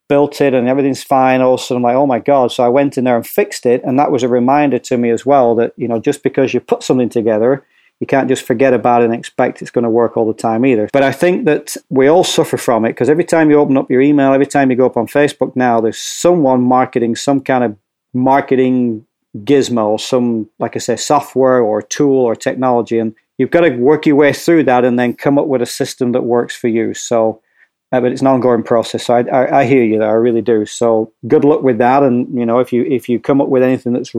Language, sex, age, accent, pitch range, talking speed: English, male, 40-59, British, 120-135 Hz, 265 wpm